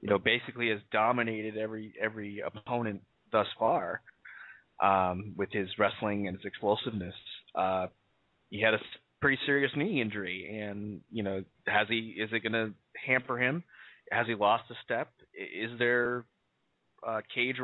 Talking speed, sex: 150 wpm, male